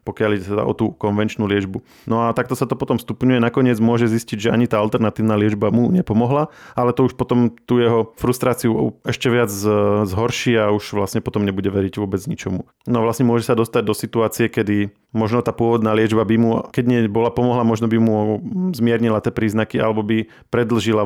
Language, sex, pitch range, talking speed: Slovak, male, 105-120 Hz, 195 wpm